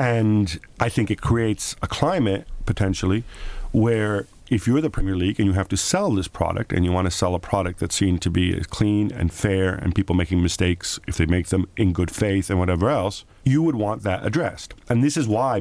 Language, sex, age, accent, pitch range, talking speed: English, male, 40-59, American, 95-110 Hz, 225 wpm